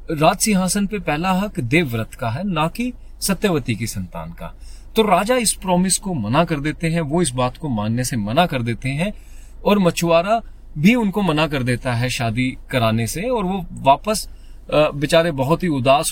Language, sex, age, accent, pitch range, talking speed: Hindi, male, 30-49, native, 125-190 Hz, 185 wpm